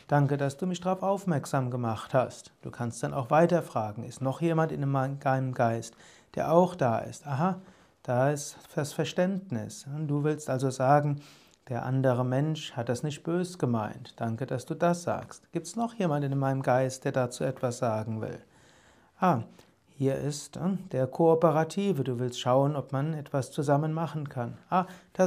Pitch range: 130-170 Hz